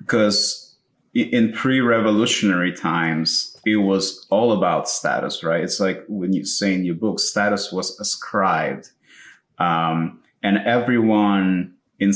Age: 30-49